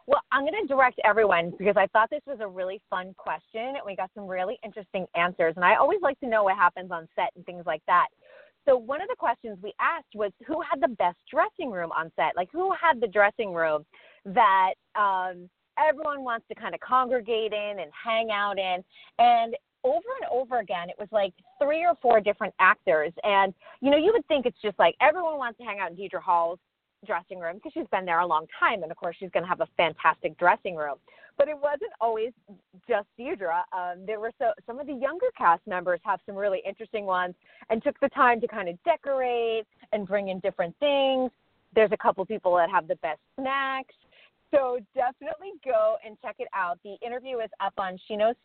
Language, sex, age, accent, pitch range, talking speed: English, female, 30-49, American, 185-270 Hz, 220 wpm